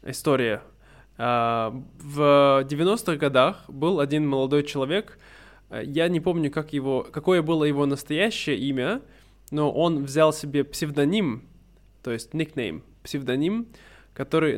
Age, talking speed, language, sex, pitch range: 20-39, 105 wpm, Russian, male, 135-160 Hz